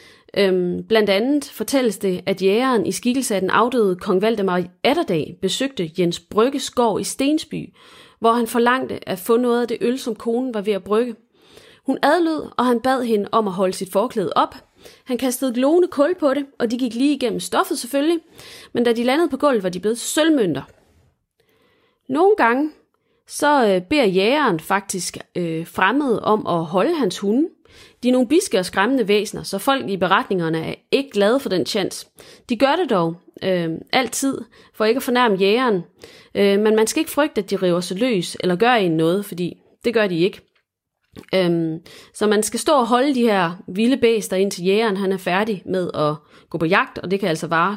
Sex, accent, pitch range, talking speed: female, native, 190-260 Hz, 195 wpm